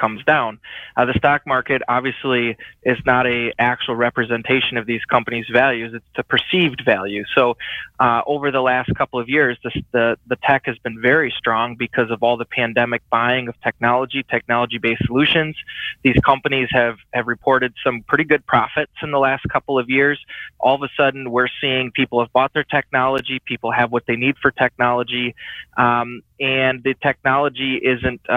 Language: English